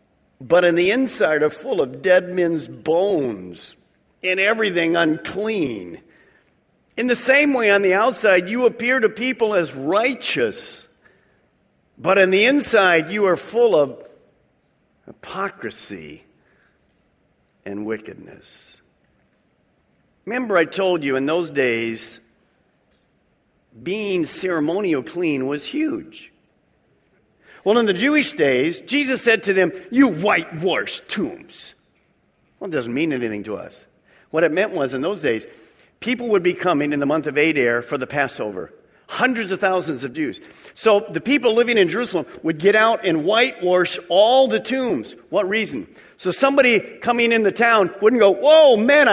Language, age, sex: English, 50-69, male